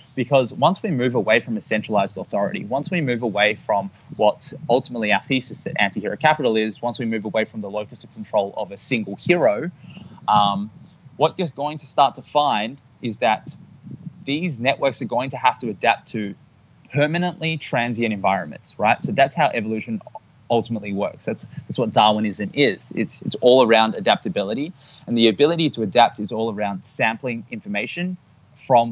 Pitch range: 110-145 Hz